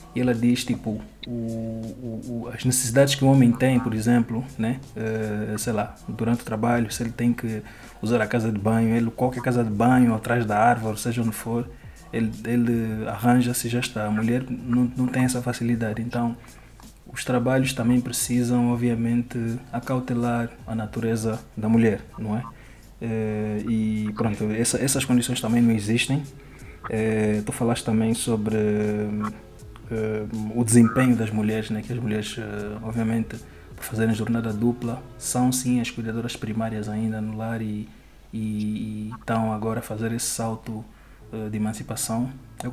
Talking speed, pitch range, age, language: 150 wpm, 110-120 Hz, 20-39, Portuguese